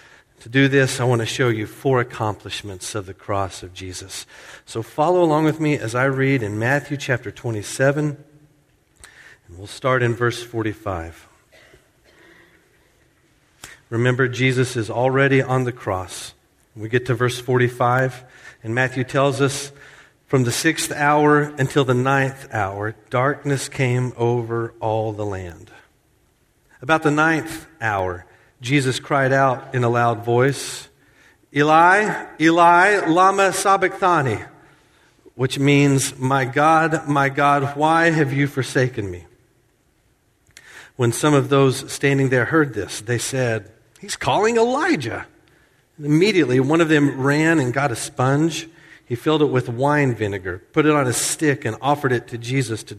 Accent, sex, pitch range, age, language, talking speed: American, male, 120-145 Hz, 50-69, English, 145 wpm